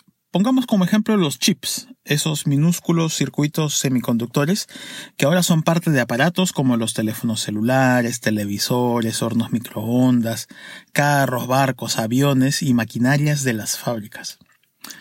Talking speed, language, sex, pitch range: 120 wpm, Spanish, male, 120-190 Hz